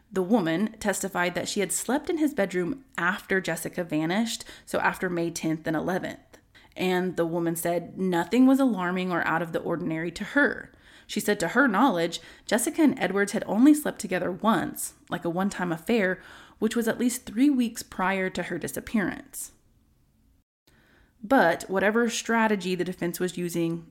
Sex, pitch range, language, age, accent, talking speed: female, 170-220 Hz, English, 20-39, American, 170 wpm